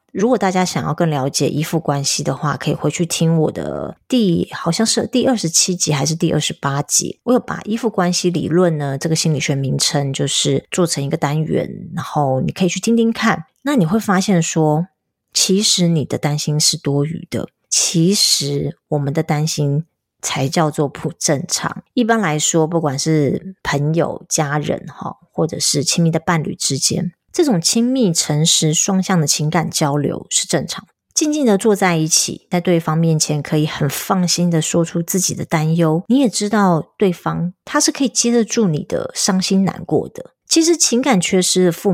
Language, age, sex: Chinese, 30-49, female